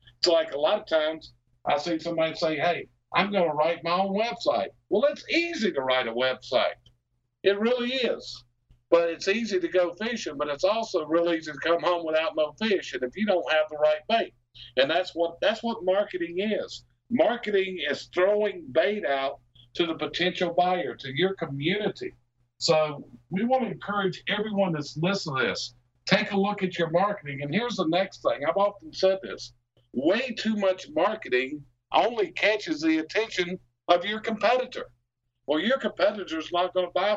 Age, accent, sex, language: 50-69, American, male, English